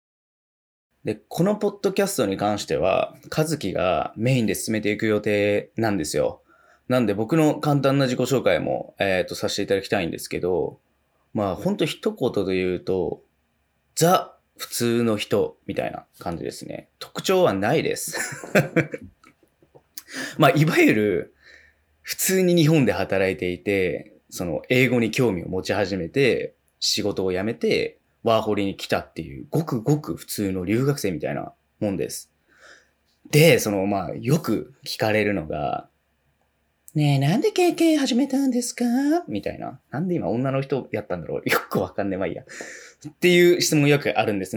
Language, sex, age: Japanese, male, 20-39